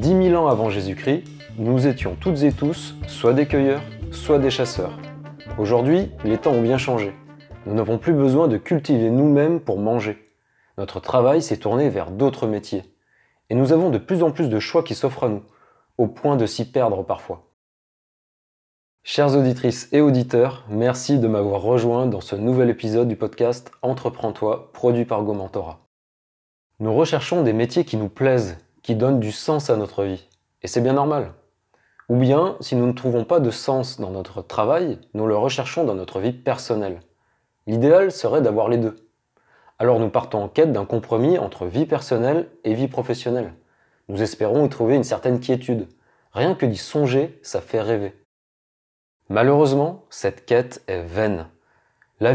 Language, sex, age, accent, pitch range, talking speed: French, male, 20-39, French, 110-140 Hz, 175 wpm